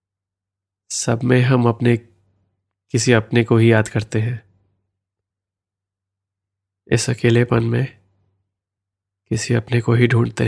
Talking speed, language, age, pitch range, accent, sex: 110 wpm, Hindi, 20-39, 100-120 Hz, native, male